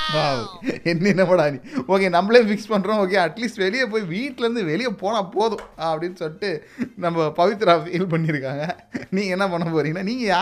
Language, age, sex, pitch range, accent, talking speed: Tamil, 30-49, male, 160-240 Hz, native, 120 wpm